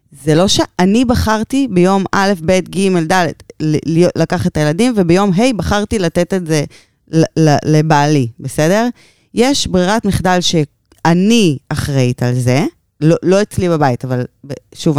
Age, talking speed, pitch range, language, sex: 20-39, 150 wpm, 145-195 Hz, Hebrew, female